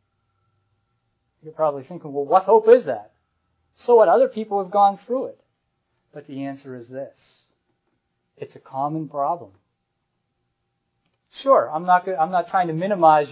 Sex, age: male, 50-69